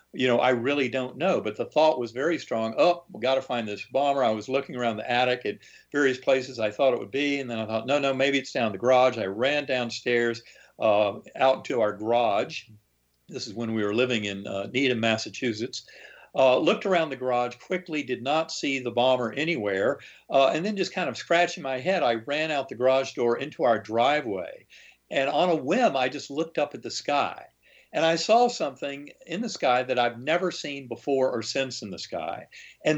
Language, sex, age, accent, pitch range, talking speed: English, male, 50-69, American, 120-155 Hz, 220 wpm